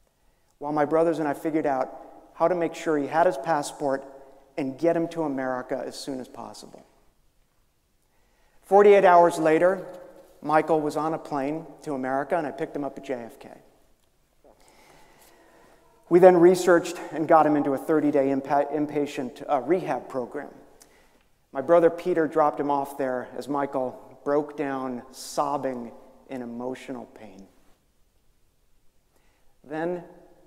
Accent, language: American, English